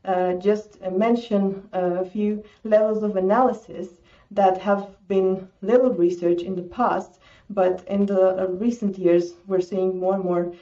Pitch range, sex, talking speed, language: 175-205 Hz, female, 160 wpm, English